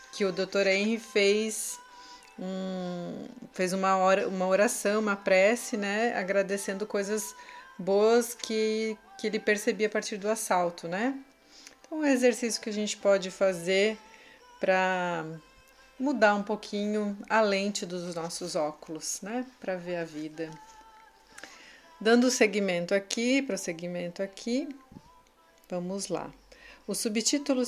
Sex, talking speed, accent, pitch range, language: female, 125 wpm, Brazilian, 185-235 Hz, Portuguese